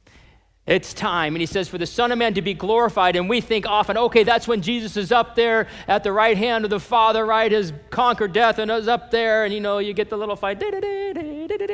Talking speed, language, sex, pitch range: 245 wpm, English, male, 175-245 Hz